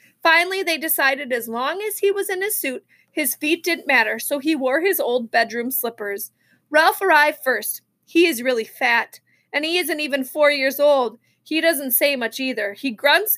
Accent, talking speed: American, 195 wpm